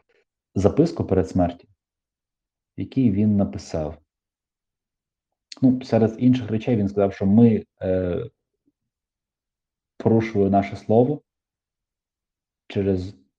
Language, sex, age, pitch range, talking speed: Ukrainian, male, 30-49, 95-110 Hz, 85 wpm